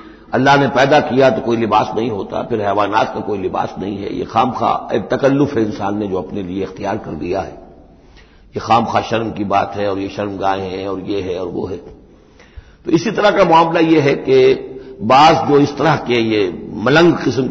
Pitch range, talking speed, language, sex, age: 105-150 Hz, 215 wpm, Hindi, male, 60-79